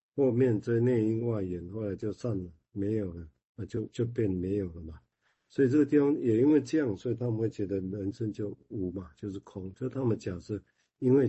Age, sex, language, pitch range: 50-69, male, Chinese, 100-120 Hz